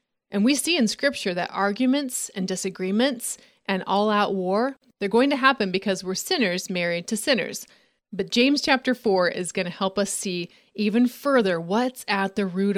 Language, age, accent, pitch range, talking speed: English, 30-49, American, 195-250 Hz, 180 wpm